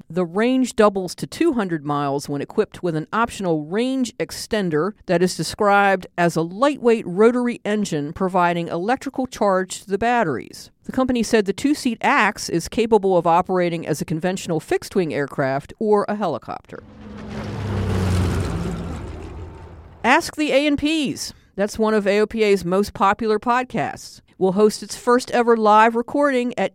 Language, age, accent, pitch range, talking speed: English, 50-69, American, 170-230 Hz, 140 wpm